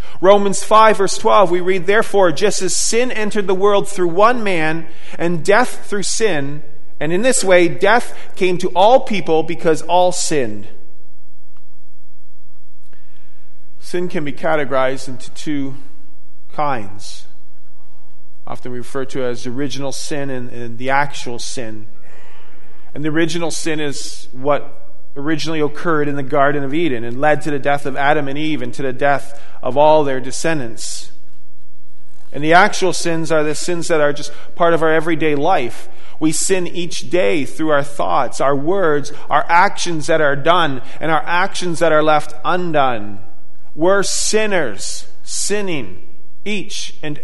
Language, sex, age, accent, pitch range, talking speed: English, male, 40-59, American, 125-175 Hz, 155 wpm